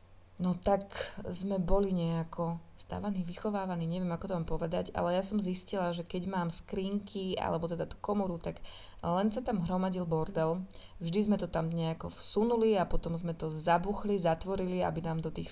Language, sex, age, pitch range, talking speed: Slovak, female, 20-39, 170-195 Hz, 175 wpm